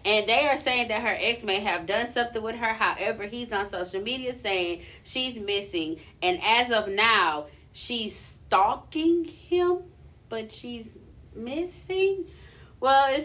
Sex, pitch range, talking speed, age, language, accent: female, 185-250 Hz, 150 wpm, 30-49, English, American